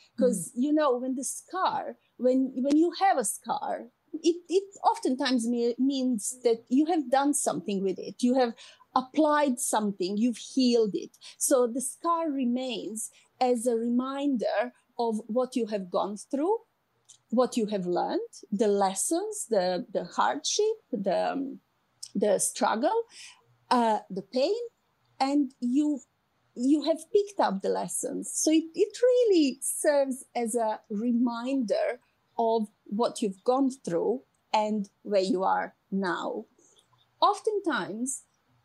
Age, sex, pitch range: 30-49, female, 235-315 Hz